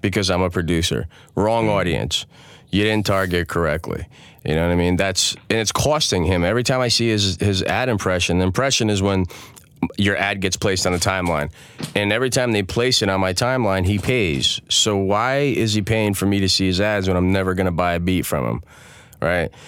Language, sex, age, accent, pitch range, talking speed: English, male, 30-49, American, 90-110 Hz, 215 wpm